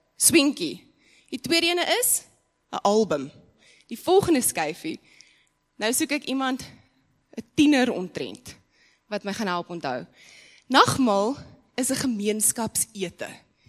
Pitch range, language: 200-290 Hz, English